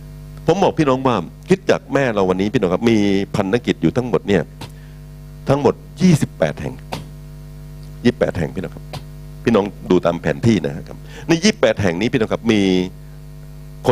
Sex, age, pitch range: male, 60-79, 115-150 Hz